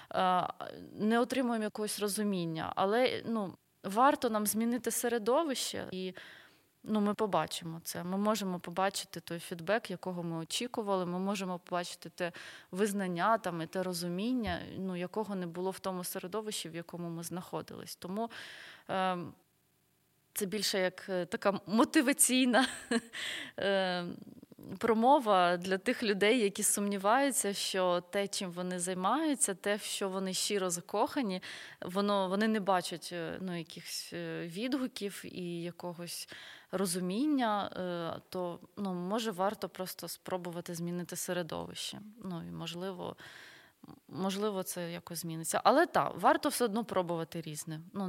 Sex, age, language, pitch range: female, 20-39, Ukrainian, 175-215 Hz